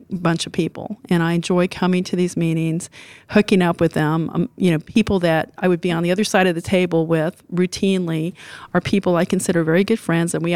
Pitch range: 170-195 Hz